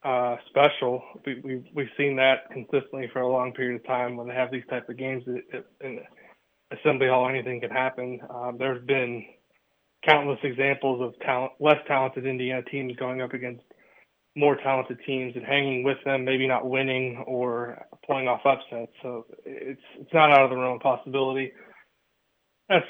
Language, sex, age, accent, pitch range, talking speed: English, male, 20-39, American, 125-140 Hz, 175 wpm